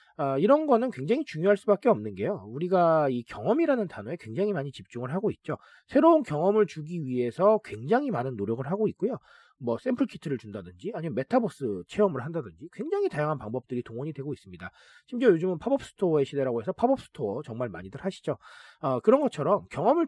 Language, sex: Korean, male